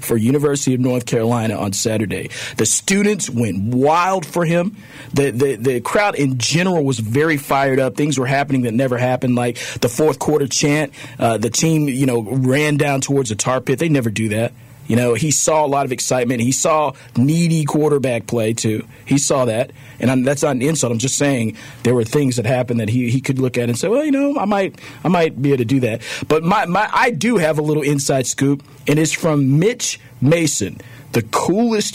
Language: English